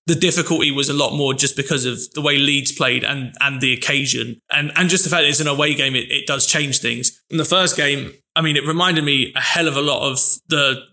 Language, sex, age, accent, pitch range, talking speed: English, male, 20-39, British, 140-165 Hz, 265 wpm